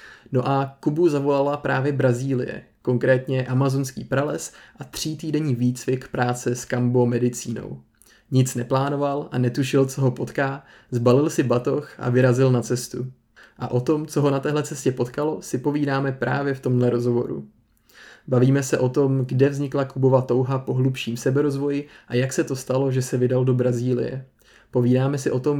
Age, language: 20-39, Czech